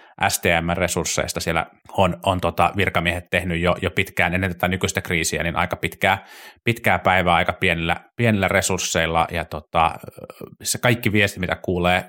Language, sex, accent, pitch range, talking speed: Finnish, male, native, 90-110 Hz, 150 wpm